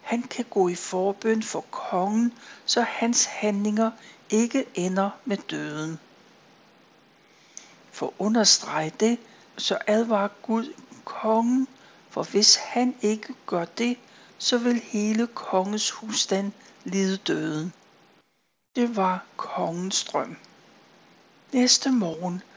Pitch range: 195-235 Hz